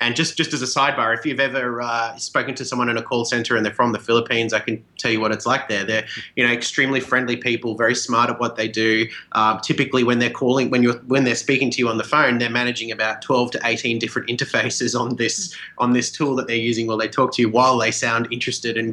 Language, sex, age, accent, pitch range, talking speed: English, male, 30-49, Australian, 115-130 Hz, 265 wpm